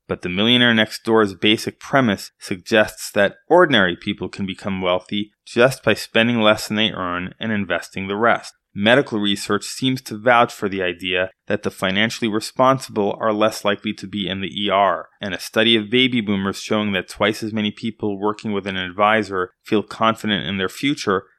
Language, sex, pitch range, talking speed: English, male, 100-115 Hz, 185 wpm